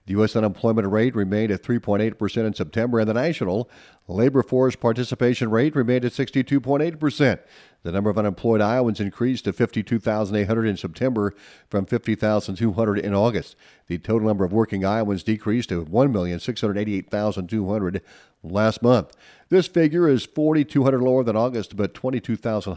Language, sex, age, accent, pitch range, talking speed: English, male, 40-59, American, 105-130 Hz, 140 wpm